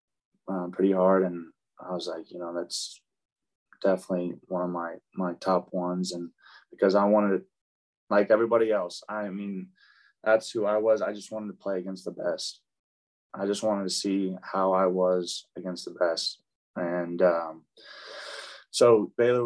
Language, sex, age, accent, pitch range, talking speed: English, male, 20-39, American, 90-100 Hz, 165 wpm